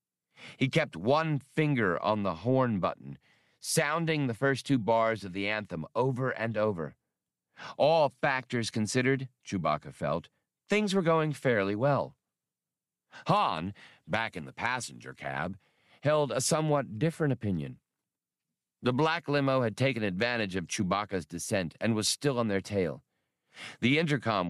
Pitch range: 100-145 Hz